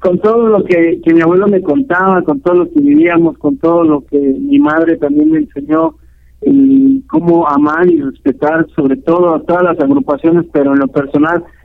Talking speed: 195 wpm